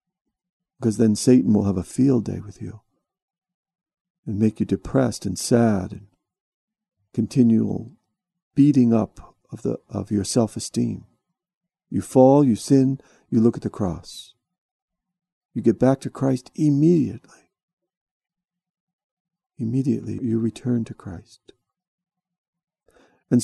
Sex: male